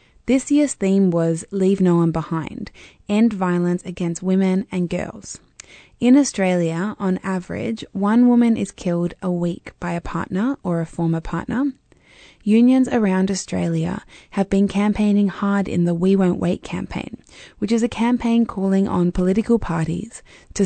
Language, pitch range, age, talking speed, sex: English, 175-210 Hz, 20-39, 155 wpm, female